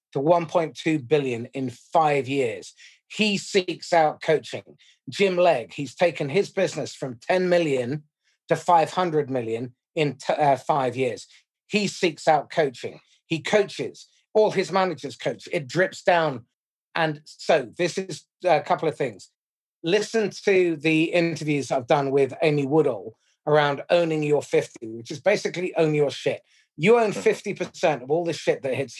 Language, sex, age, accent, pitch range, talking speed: English, male, 30-49, British, 145-185 Hz, 155 wpm